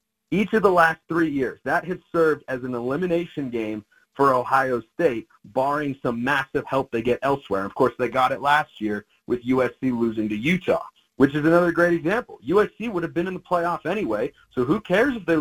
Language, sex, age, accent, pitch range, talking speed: English, male, 40-59, American, 130-185 Hz, 210 wpm